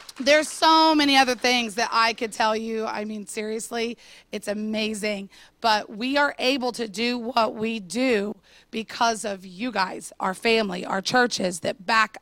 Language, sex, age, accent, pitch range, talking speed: English, female, 30-49, American, 205-255 Hz, 165 wpm